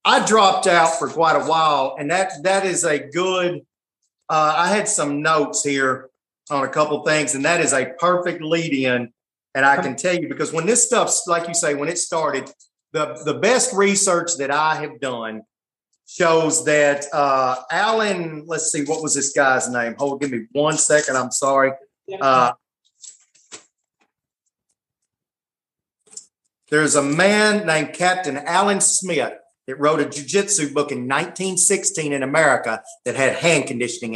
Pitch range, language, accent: 140-190 Hz, English, American